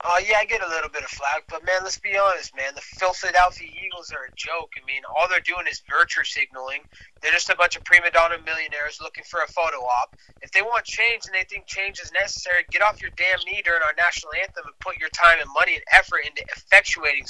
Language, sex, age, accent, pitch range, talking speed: English, male, 20-39, American, 150-185 Hz, 245 wpm